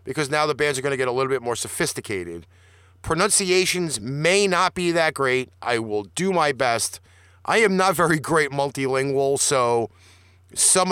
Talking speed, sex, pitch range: 175 wpm, male, 115-190 Hz